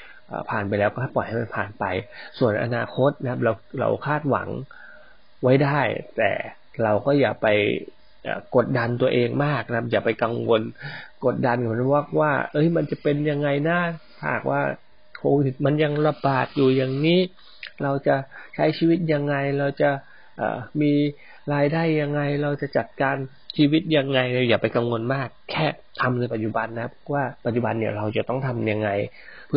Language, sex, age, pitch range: Thai, male, 20-39, 115-145 Hz